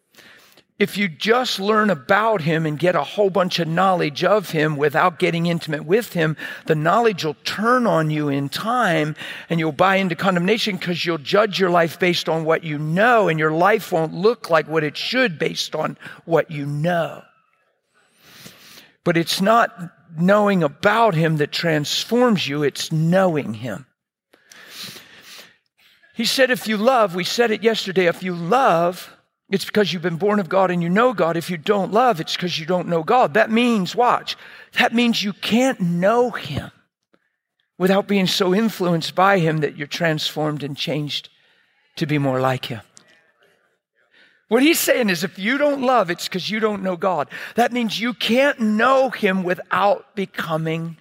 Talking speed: 175 wpm